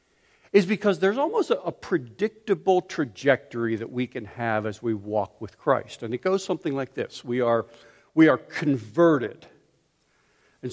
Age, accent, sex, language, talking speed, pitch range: 60-79, American, male, English, 155 wpm, 125-195 Hz